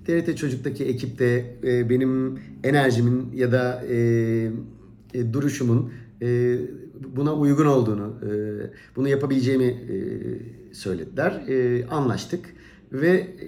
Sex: male